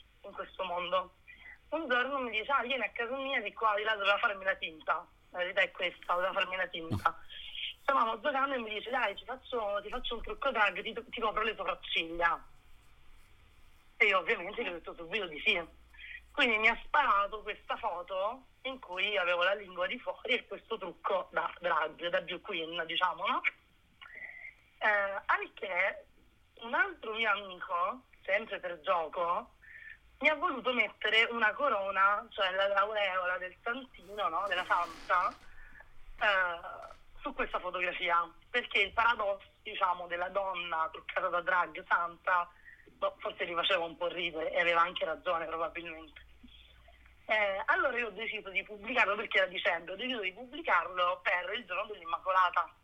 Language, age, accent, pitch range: Italian, 30-49, native, 180-250 Hz